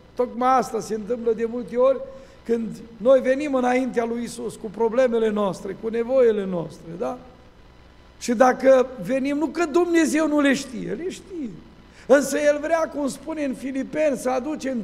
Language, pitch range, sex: Romanian, 200-265 Hz, male